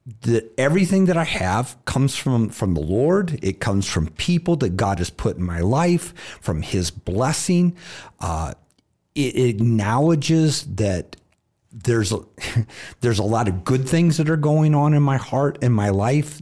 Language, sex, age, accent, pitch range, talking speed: English, male, 50-69, American, 95-135 Hz, 170 wpm